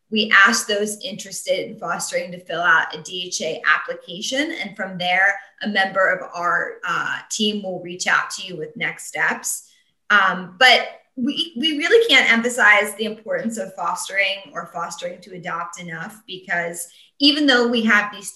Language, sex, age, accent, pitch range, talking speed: English, female, 20-39, American, 185-245 Hz, 165 wpm